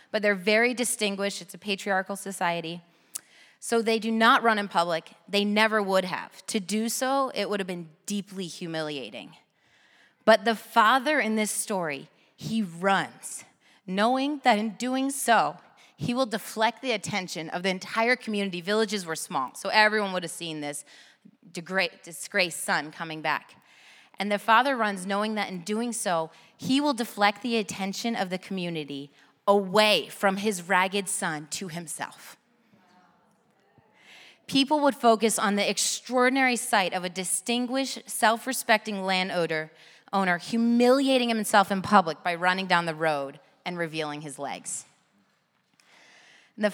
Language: English